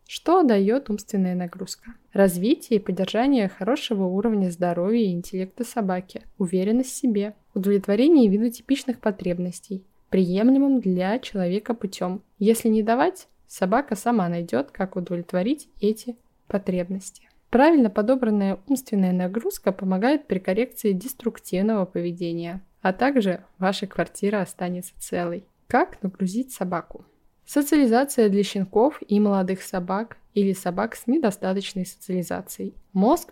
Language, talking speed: Russian, 115 wpm